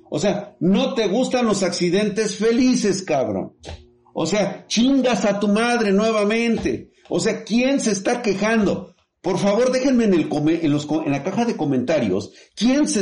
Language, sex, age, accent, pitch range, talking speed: Spanish, male, 50-69, Mexican, 150-225 Hz, 170 wpm